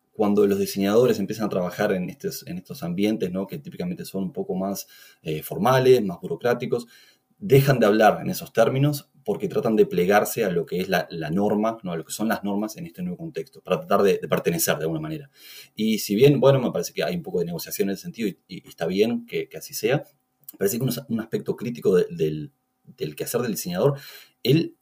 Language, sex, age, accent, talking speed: English, male, 30-49, Argentinian, 215 wpm